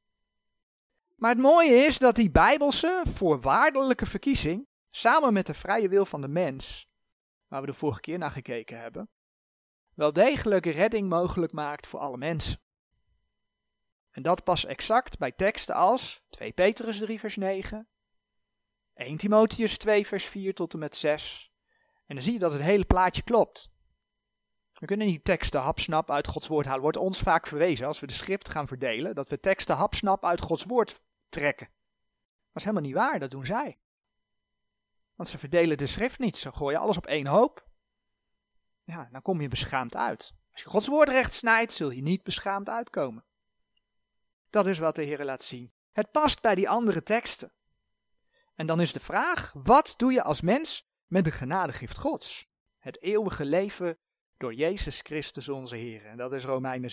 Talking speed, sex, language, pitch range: 175 wpm, male, Dutch, 145-215 Hz